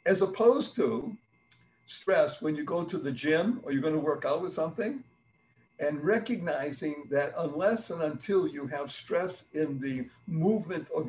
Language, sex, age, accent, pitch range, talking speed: English, male, 60-79, American, 145-190 Hz, 160 wpm